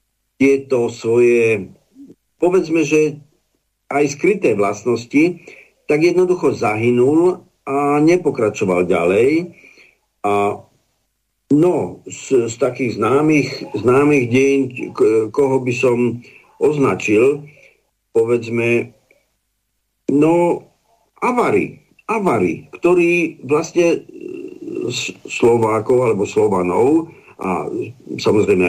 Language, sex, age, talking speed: Slovak, male, 50-69, 80 wpm